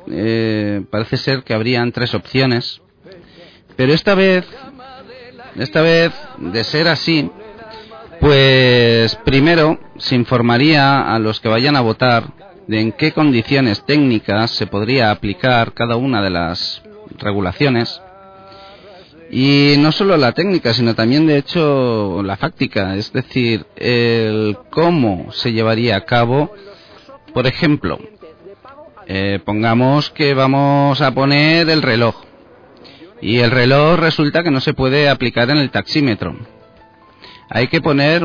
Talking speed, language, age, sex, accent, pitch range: 130 wpm, Spanish, 40-59, male, Spanish, 115-155 Hz